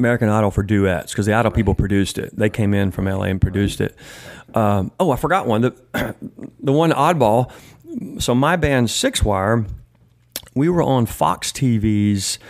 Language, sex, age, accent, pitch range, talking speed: English, male, 40-59, American, 105-130 Hz, 175 wpm